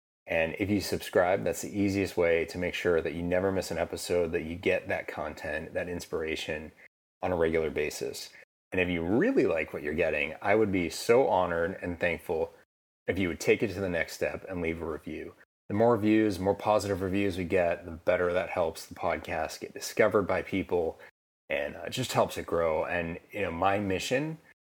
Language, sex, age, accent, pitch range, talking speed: English, male, 30-49, American, 85-100 Hz, 205 wpm